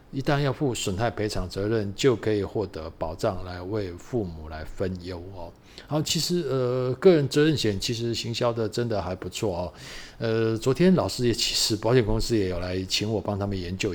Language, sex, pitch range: Chinese, male, 95-125 Hz